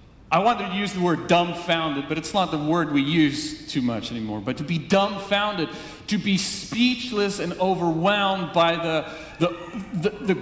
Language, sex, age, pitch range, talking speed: English, male, 40-59, 150-200 Hz, 180 wpm